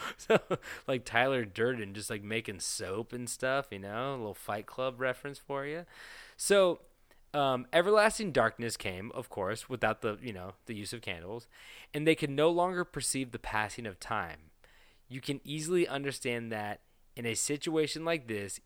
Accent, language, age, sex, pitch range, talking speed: American, English, 20-39, male, 105-135 Hz, 175 wpm